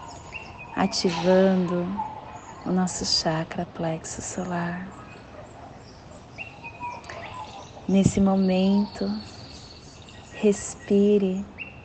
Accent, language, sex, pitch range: Brazilian, Portuguese, female, 170-195 Hz